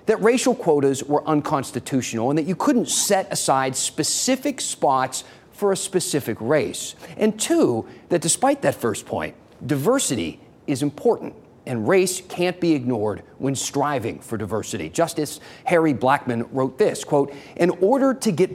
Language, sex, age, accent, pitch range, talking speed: English, male, 40-59, American, 130-185 Hz, 150 wpm